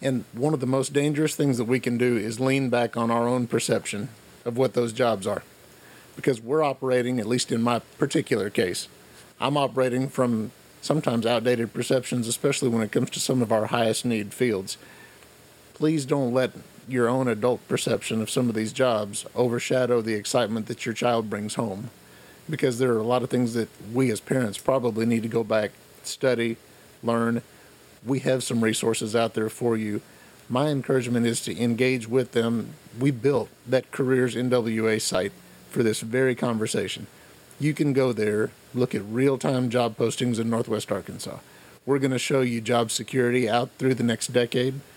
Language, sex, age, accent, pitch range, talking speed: English, male, 50-69, American, 115-130 Hz, 180 wpm